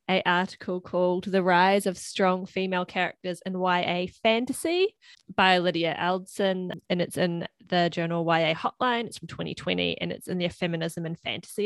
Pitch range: 175-215 Hz